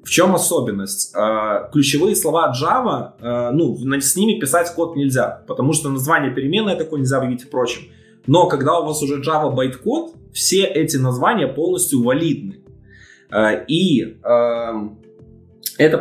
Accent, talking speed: native, 125 wpm